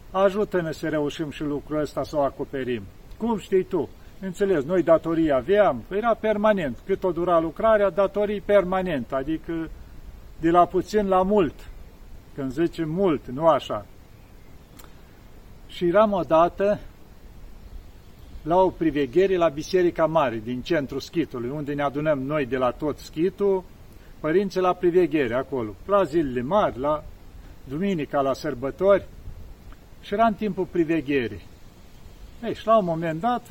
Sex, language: male, Romanian